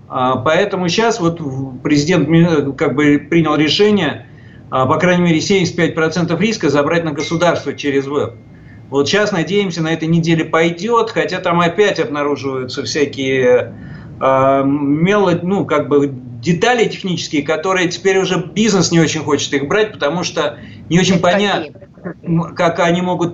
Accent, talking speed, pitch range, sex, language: native, 135 wpm, 140-175 Hz, male, Russian